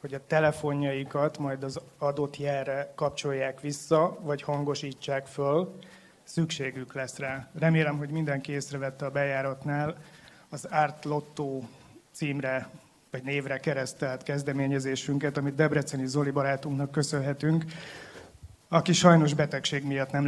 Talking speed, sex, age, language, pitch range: 115 wpm, male, 30-49, Hungarian, 135-155 Hz